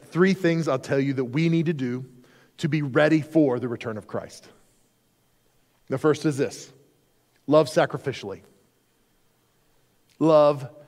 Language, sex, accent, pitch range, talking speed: English, male, American, 165-225 Hz, 140 wpm